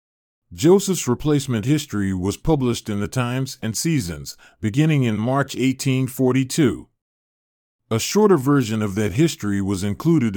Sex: male